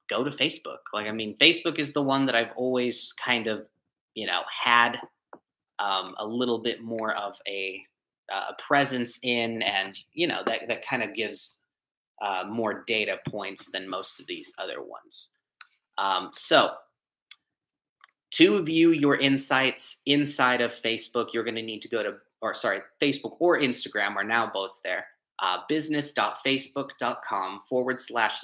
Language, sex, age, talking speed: English, male, 30-49, 160 wpm